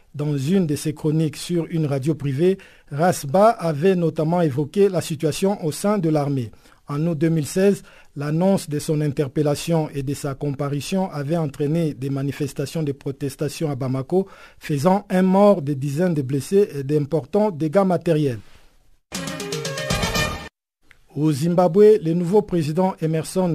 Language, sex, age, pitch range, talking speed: French, male, 50-69, 150-185 Hz, 140 wpm